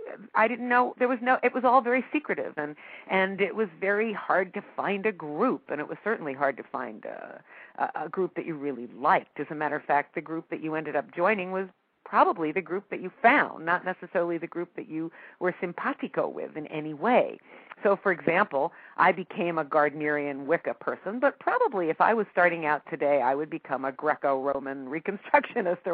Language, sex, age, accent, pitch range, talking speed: English, female, 50-69, American, 145-195 Hz, 210 wpm